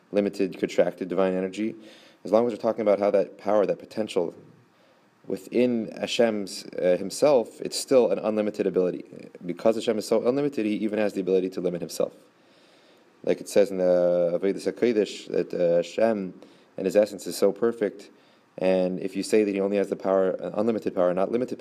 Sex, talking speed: male, 190 wpm